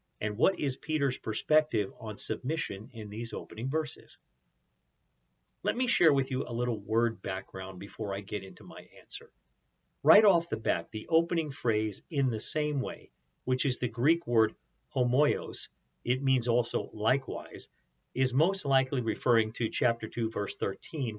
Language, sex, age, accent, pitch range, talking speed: English, male, 50-69, American, 110-140 Hz, 160 wpm